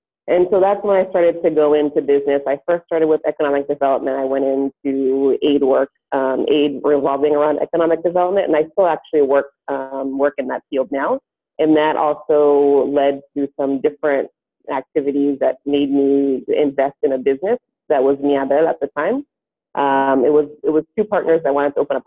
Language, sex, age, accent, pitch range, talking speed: English, female, 30-49, American, 135-160 Hz, 190 wpm